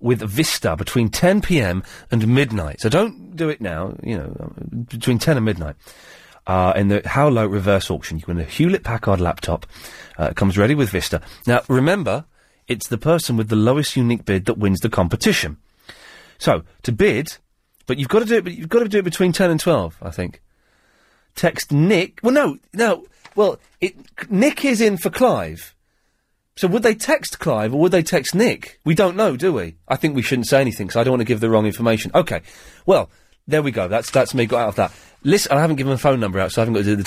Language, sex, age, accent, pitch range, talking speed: English, male, 30-49, British, 100-165 Hz, 225 wpm